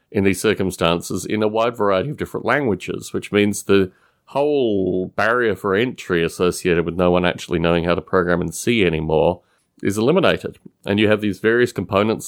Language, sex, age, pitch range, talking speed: English, male, 30-49, 95-125 Hz, 180 wpm